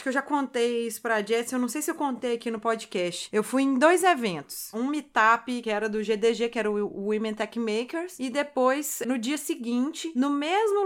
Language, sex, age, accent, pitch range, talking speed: Portuguese, female, 30-49, Brazilian, 225-295 Hz, 215 wpm